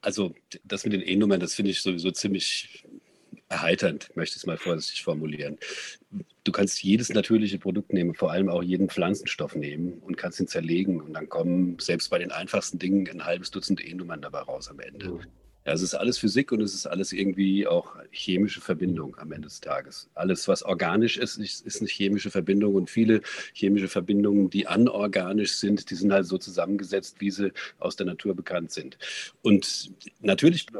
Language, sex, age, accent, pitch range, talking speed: German, male, 40-59, German, 95-110 Hz, 185 wpm